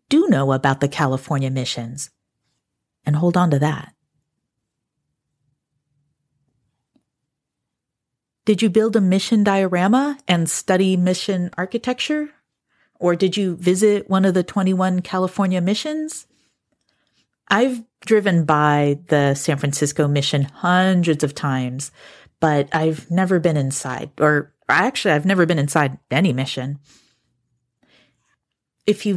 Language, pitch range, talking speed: English, 140-190 Hz, 115 wpm